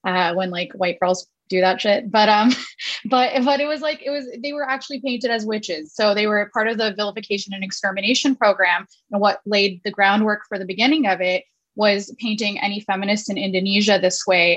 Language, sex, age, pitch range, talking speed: English, female, 20-39, 195-225 Hz, 215 wpm